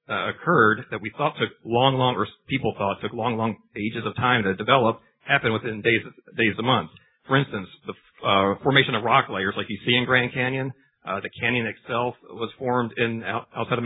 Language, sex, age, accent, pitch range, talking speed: English, male, 40-59, American, 100-125 Hz, 205 wpm